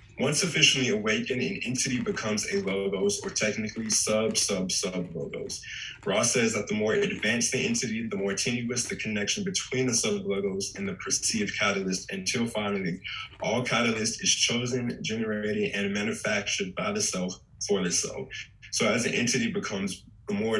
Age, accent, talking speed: 20-39, American, 165 wpm